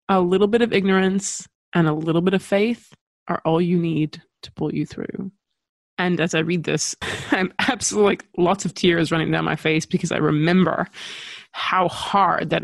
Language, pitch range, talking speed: English, 160-195 Hz, 190 wpm